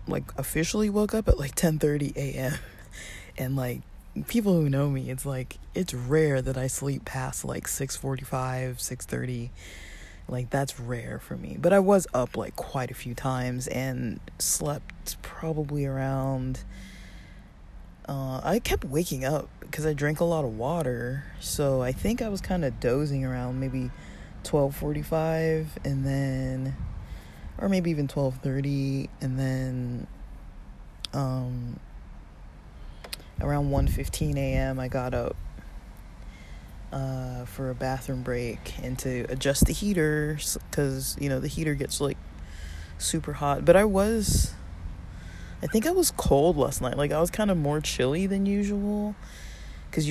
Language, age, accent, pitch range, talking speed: English, 20-39, American, 120-150 Hz, 155 wpm